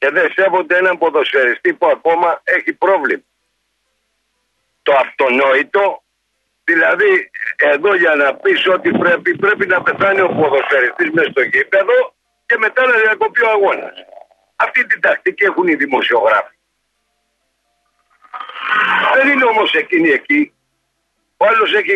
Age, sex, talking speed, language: 60-79, male, 125 wpm, Greek